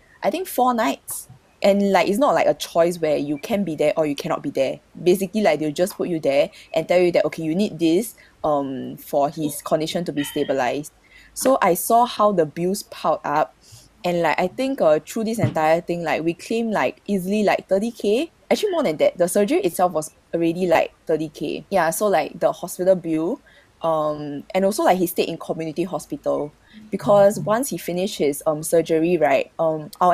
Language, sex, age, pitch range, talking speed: English, female, 20-39, 155-200 Hz, 205 wpm